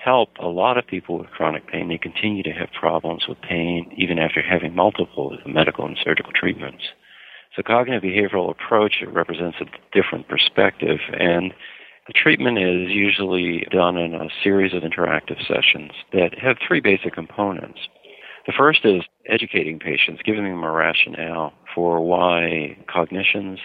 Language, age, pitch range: English, 50-69, 85-95 Hz